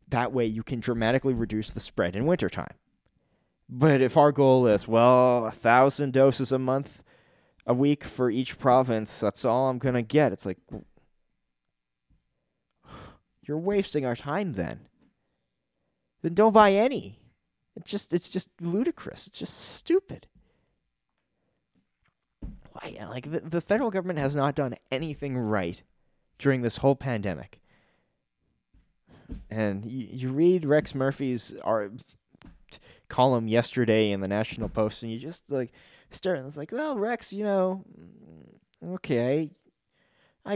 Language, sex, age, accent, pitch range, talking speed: English, male, 20-39, American, 110-145 Hz, 140 wpm